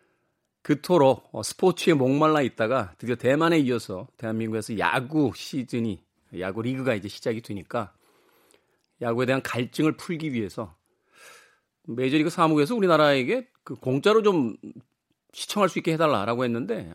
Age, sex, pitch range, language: 40-59, male, 110-155 Hz, Korean